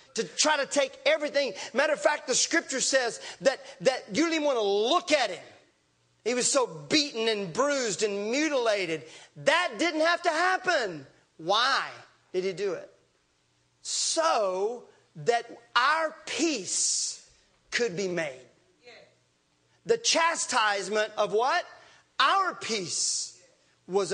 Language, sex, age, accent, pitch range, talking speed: English, male, 40-59, American, 195-290 Hz, 130 wpm